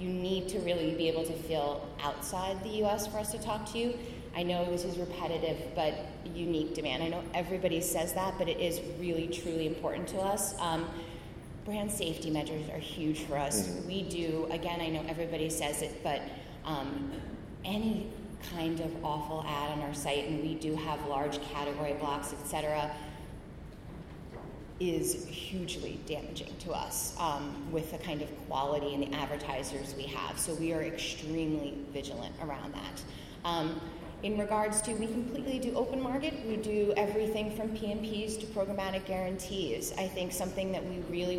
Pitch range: 155-185 Hz